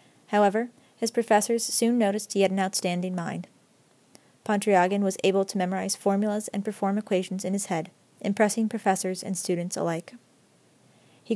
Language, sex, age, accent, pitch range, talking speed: English, female, 30-49, American, 185-210 Hz, 150 wpm